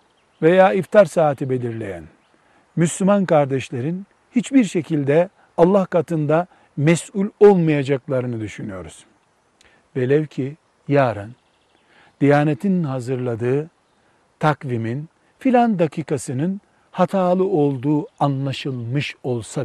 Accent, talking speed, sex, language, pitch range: native, 75 wpm, male, Turkish, 135-175 Hz